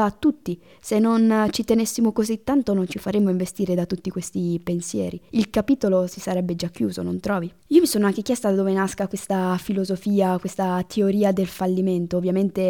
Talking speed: 185 wpm